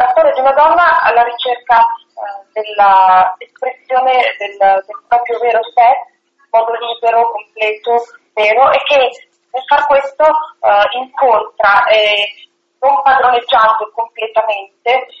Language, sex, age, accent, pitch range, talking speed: Italian, female, 30-49, native, 215-285 Hz, 120 wpm